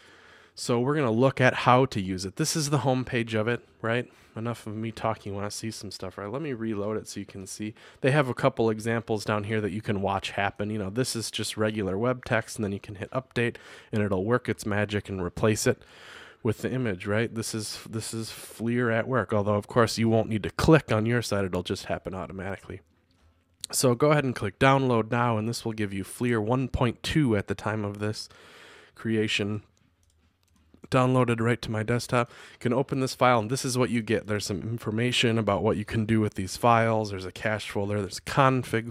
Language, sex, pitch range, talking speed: English, male, 100-120 Hz, 230 wpm